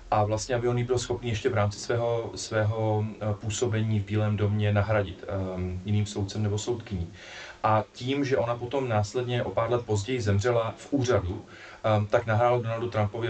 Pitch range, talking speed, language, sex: 100-120 Hz, 175 wpm, Czech, male